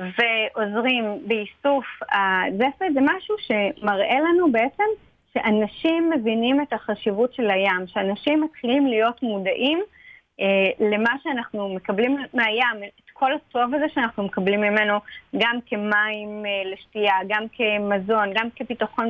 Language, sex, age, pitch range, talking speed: Hebrew, female, 30-49, 205-260 Hz, 125 wpm